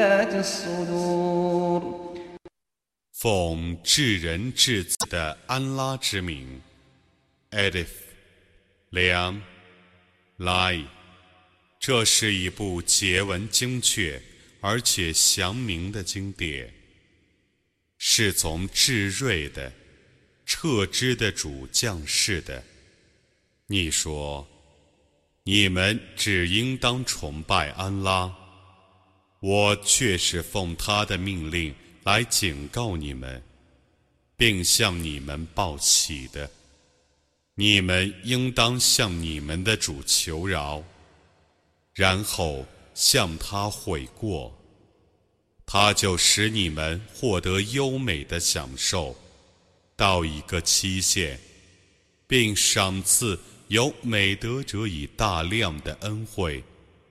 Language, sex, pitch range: Arabic, male, 85-105 Hz